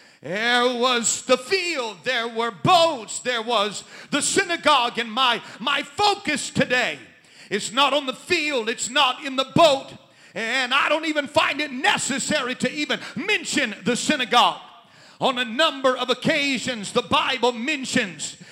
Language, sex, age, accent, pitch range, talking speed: English, male, 40-59, American, 255-320 Hz, 150 wpm